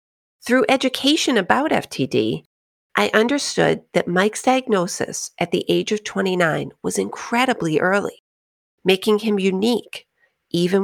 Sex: female